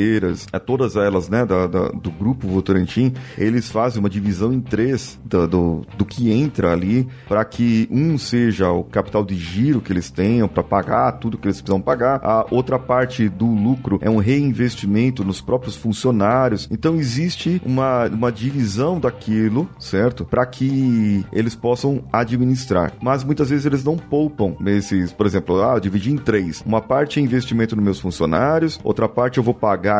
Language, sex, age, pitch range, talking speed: Portuguese, male, 30-49, 100-130 Hz, 175 wpm